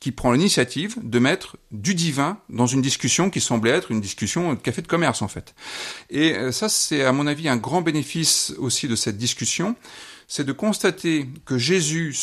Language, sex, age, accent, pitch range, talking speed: French, male, 40-59, French, 115-175 Hz, 190 wpm